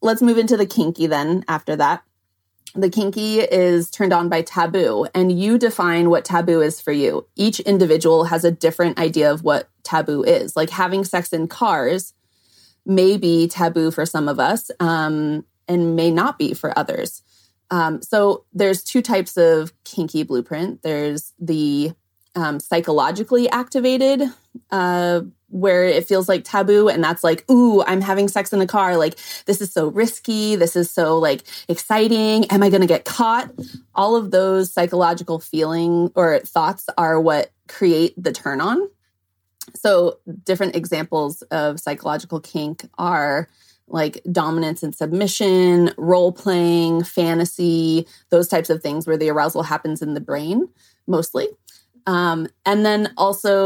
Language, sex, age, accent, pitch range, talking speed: English, female, 30-49, American, 160-195 Hz, 155 wpm